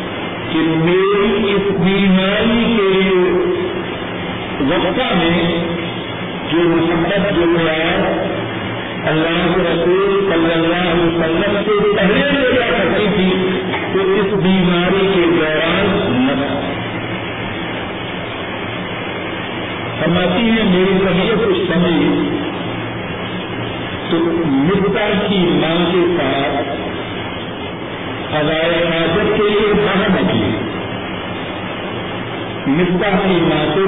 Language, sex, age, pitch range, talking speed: Urdu, female, 50-69, 165-195 Hz, 80 wpm